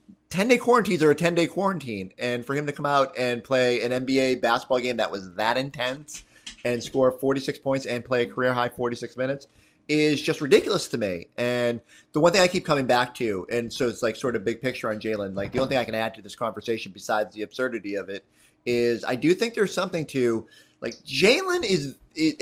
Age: 30-49